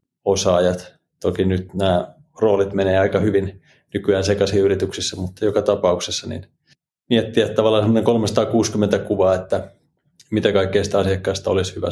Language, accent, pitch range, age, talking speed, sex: Finnish, native, 95-110 Hz, 30-49, 130 wpm, male